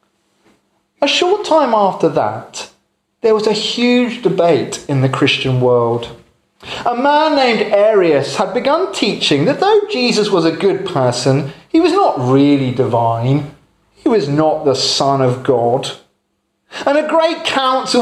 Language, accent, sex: English, British, male